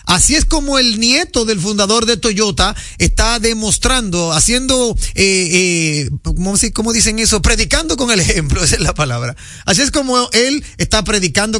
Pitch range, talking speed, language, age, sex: 180-240 Hz, 160 wpm, Spanish, 40-59, male